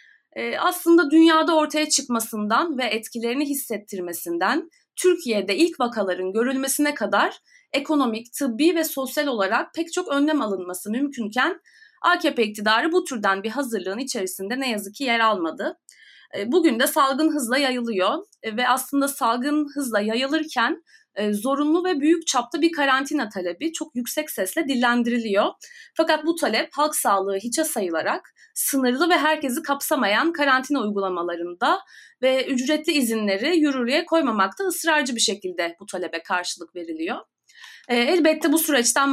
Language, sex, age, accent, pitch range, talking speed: Turkish, female, 30-49, native, 220-305 Hz, 125 wpm